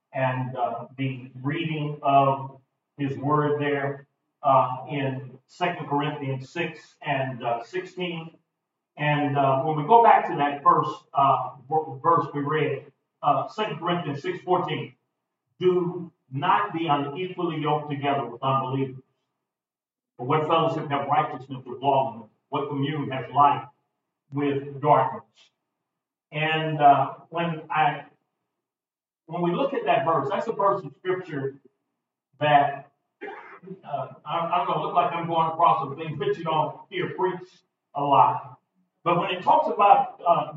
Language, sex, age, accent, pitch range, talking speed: English, male, 40-59, American, 140-175 Hz, 140 wpm